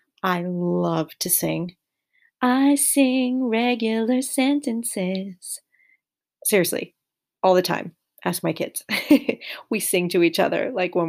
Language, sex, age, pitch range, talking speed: English, female, 30-49, 180-235 Hz, 120 wpm